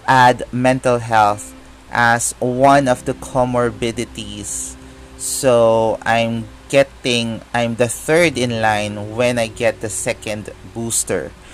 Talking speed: 115 wpm